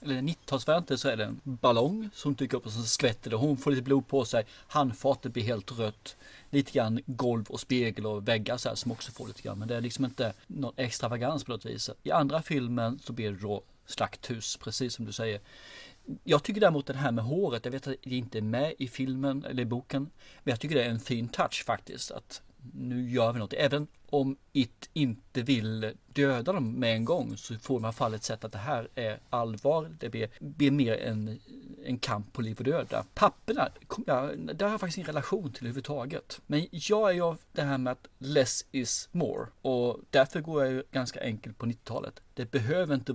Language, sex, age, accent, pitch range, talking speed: Swedish, male, 30-49, native, 115-140 Hz, 220 wpm